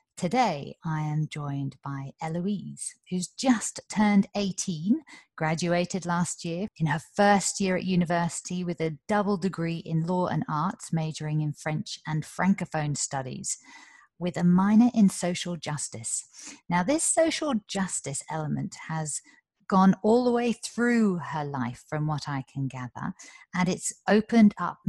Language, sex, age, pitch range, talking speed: English, female, 40-59, 150-185 Hz, 145 wpm